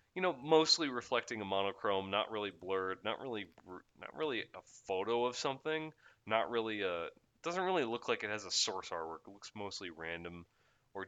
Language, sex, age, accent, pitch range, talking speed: English, male, 20-39, American, 95-125 Hz, 185 wpm